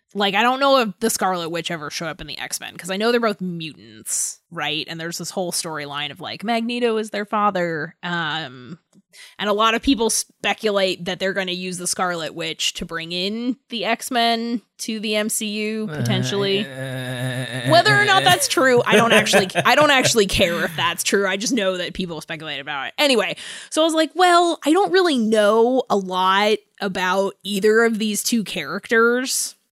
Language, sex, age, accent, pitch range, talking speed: English, female, 20-39, American, 180-230 Hz, 195 wpm